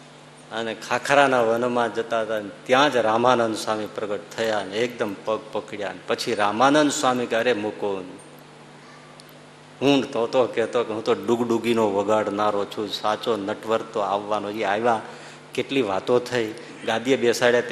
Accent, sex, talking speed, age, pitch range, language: native, male, 135 wpm, 50-69, 110-130 Hz, Gujarati